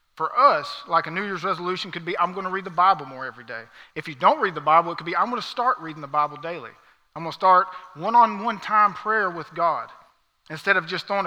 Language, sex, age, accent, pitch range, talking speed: English, male, 40-59, American, 170-200 Hz, 255 wpm